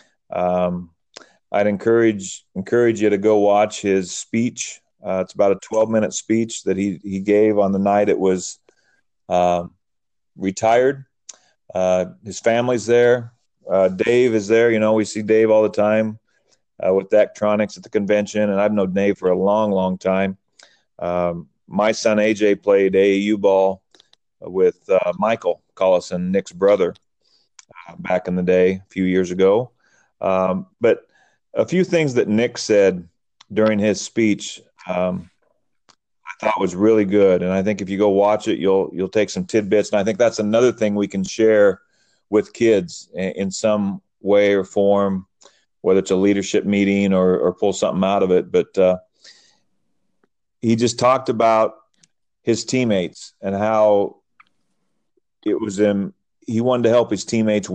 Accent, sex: American, male